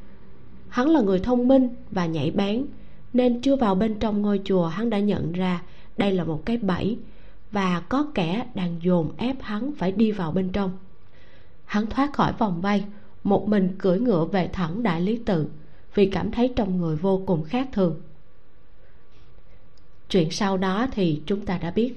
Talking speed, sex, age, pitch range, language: 185 wpm, female, 20-39, 180-230 Hz, Vietnamese